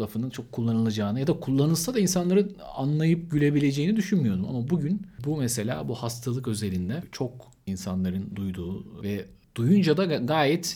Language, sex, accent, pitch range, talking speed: Turkish, male, native, 100-135 Hz, 140 wpm